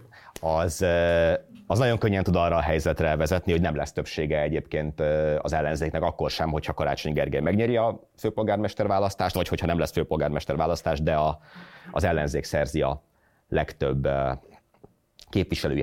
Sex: male